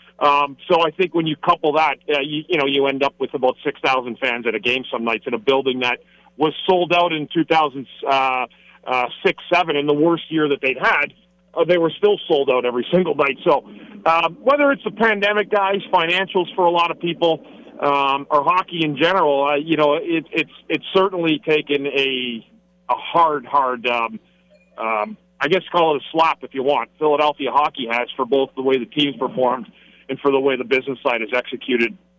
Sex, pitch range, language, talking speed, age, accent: male, 130-170 Hz, English, 215 wpm, 40-59, American